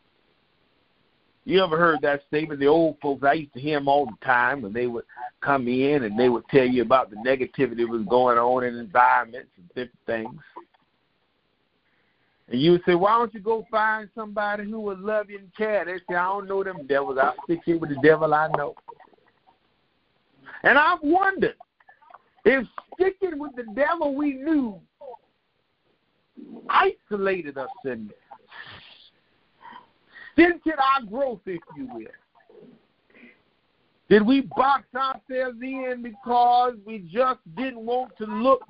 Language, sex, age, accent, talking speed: English, male, 50-69, American, 155 wpm